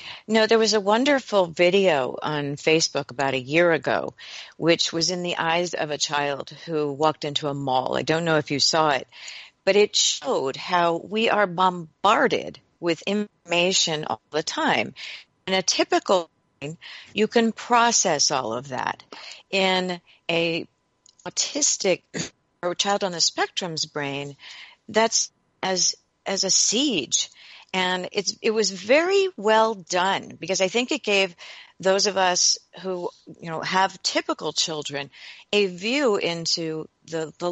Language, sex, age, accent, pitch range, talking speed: English, female, 50-69, American, 155-210 Hz, 150 wpm